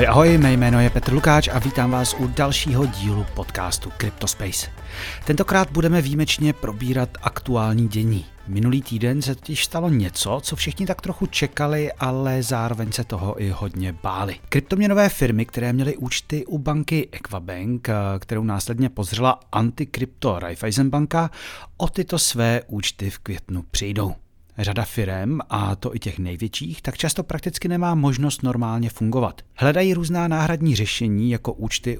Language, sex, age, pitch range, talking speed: Czech, male, 40-59, 105-145 Hz, 145 wpm